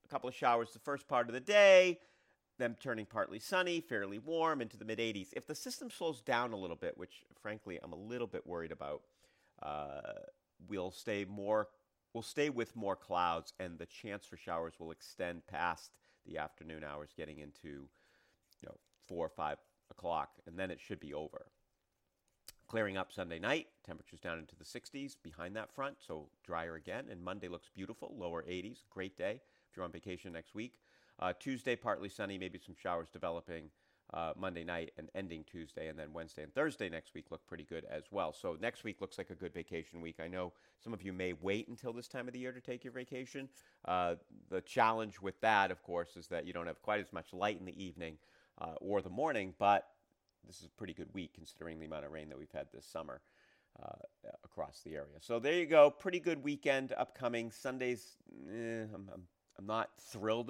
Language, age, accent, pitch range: English, 40-59, American, 85-130 Hz